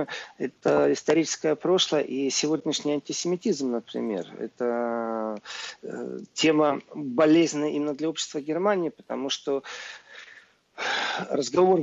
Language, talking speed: Russian, 85 wpm